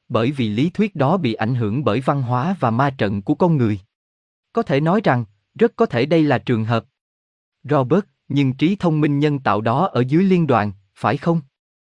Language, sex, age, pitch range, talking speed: Vietnamese, male, 20-39, 110-150 Hz, 215 wpm